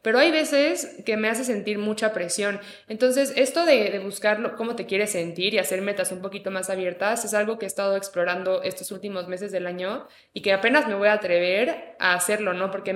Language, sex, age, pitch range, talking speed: Spanish, female, 20-39, 190-225 Hz, 220 wpm